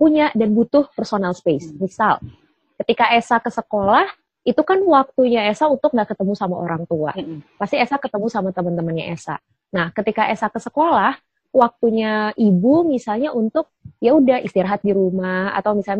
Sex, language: female, Indonesian